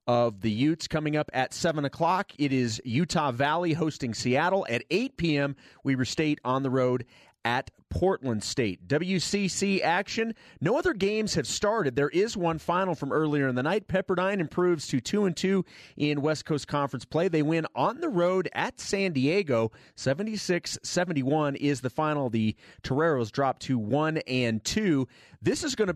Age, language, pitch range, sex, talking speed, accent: 30-49, English, 125-165 Hz, male, 175 wpm, American